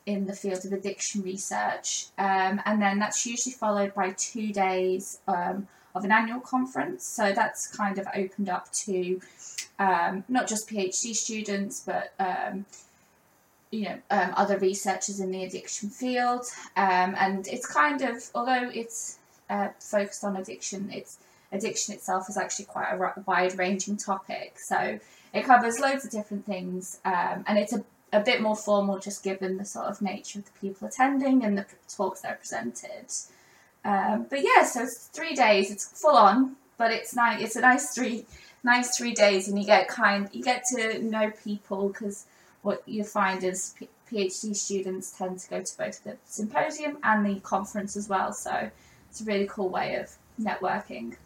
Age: 20-39